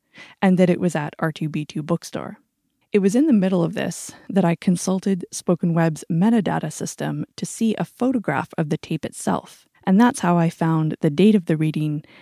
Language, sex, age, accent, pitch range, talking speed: English, female, 20-39, American, 165-200 Hz, 190 wpm